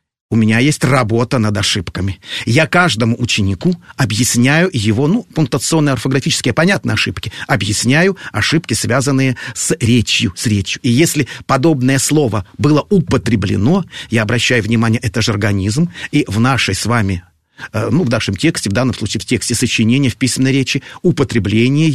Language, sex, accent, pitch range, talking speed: Russian, male, native, 110-150 Hz, 150 wpm